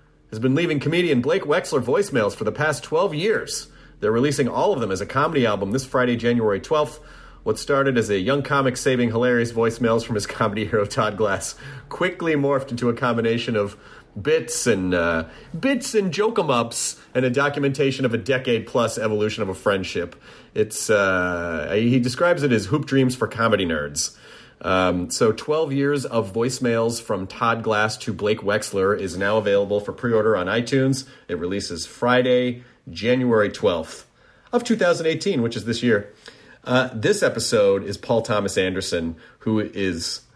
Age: 30-49